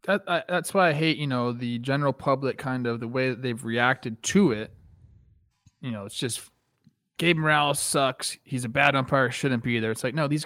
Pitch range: 125-165 Hz